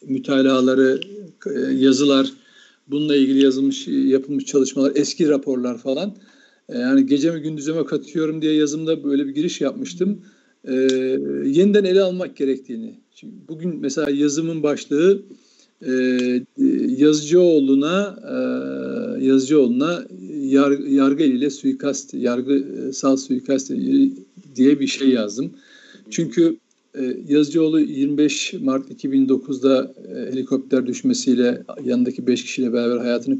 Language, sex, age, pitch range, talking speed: Turkish, male, 50-69, 135-190 Hz, 100 wpm